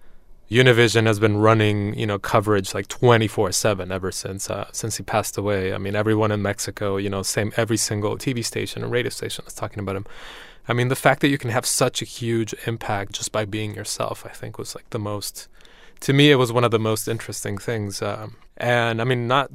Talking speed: 220 wpm